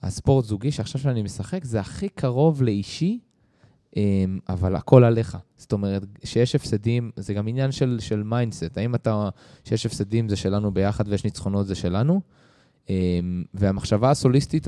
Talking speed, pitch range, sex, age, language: 145 wpm, 105-125 Hz, male, 20-39, Hebrew